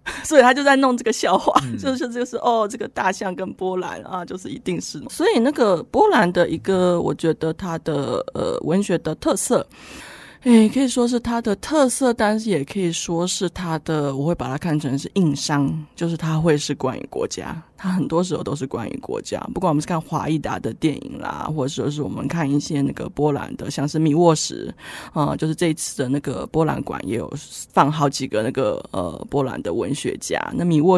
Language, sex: Chinese, female